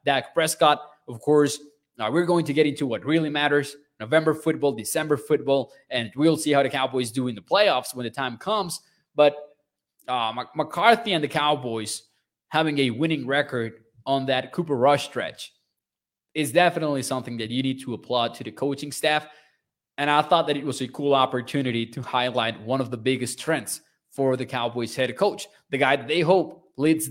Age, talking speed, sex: 20-39, 185 wpm, male